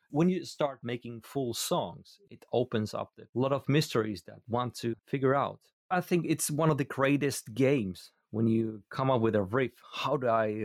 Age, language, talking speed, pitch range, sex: 30-49, English, 205 wpm, 100-120 Hz, male